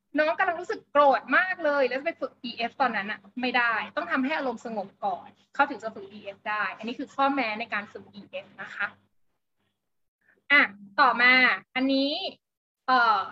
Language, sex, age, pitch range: Thai, female, 20-39, 225-280 Hz